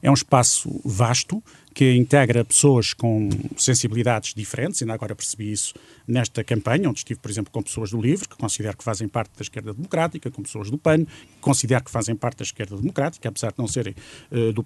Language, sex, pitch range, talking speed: Portuguese, male, 110-140 Hz, 200 wpm